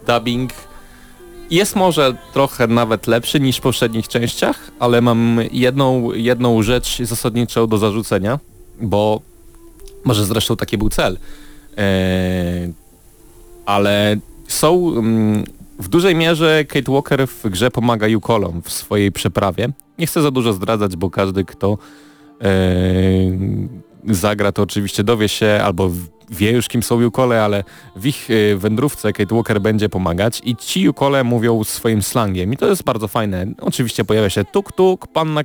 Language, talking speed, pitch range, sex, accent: Polish, 140 wpm, 100-130 Hz, male, native